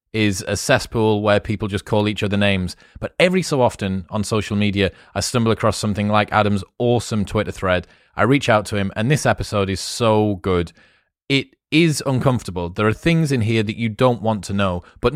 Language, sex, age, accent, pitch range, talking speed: English, male, 30-49, British, 105-130 Hz, 205 wpm